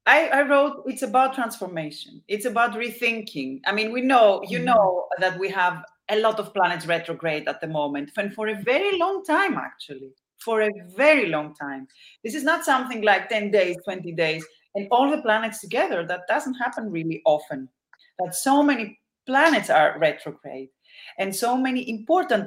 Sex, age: female, 30-49